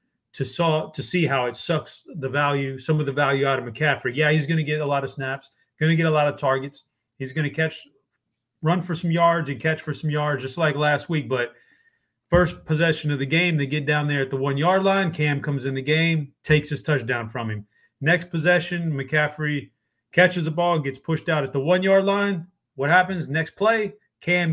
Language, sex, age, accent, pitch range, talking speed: English, male, 30-49, American, 130-160 Hz, 220 wpm